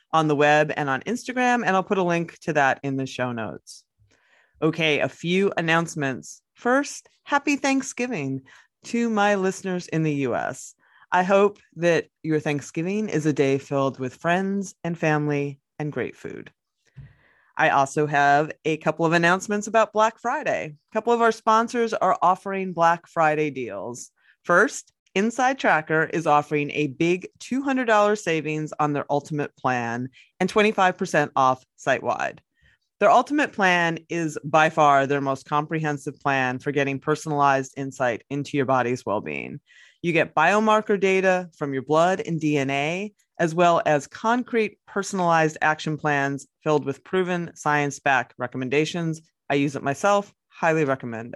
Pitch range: 140-195 Hz